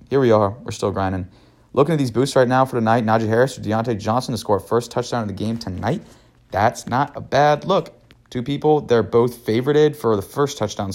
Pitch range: 115-150 Hz